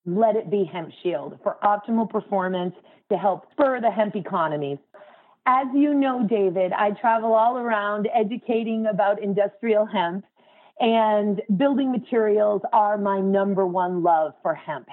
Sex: female